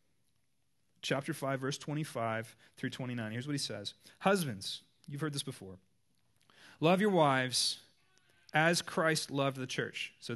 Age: 30-49